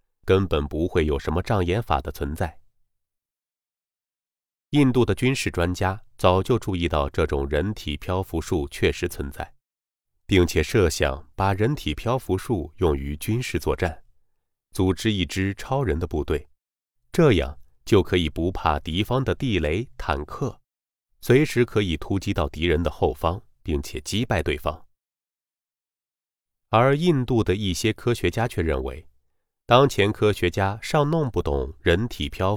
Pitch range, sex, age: 75-105 Hz, male, 30-49